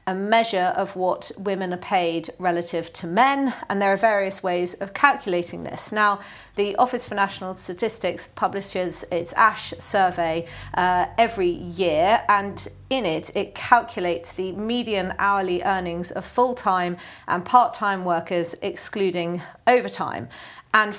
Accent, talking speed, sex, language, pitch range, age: British, 135 wpm, female, English, 175-220 Hz, 40-59